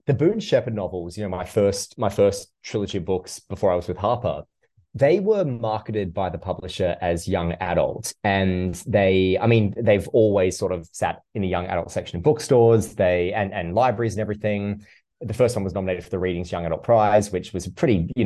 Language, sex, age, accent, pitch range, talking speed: English, male, 20-39, Australian, 90-110 Hz, 215 wpm